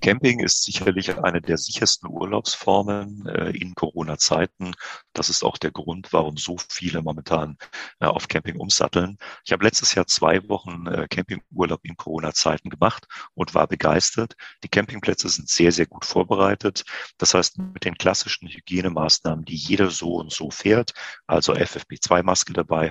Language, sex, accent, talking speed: German, male, German, 145 wpm